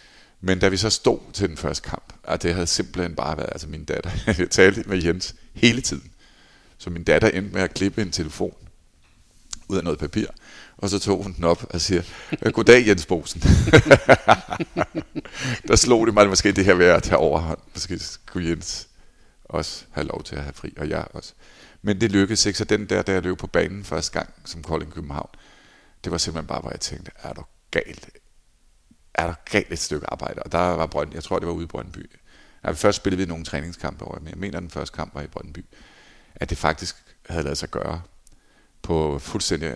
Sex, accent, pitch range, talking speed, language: male, native, 80-95 Hz, 215 wpm, Danish